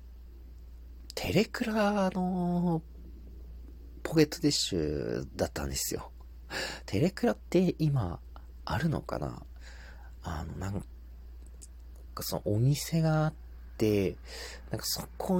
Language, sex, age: Japanese, male, 40-59